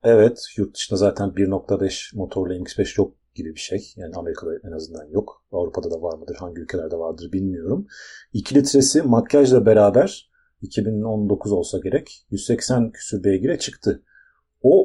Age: 40-59